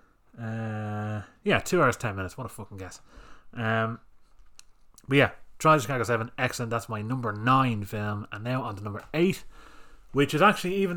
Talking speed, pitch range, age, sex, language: 175 wpm, 105-135 Hz, 30-49, male, English